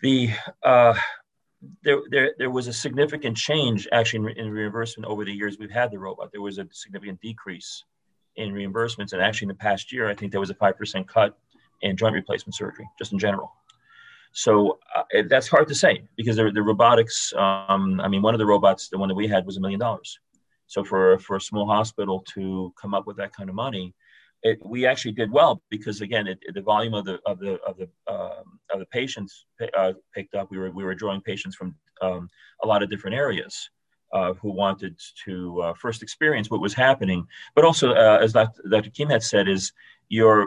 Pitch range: 95-115 Hz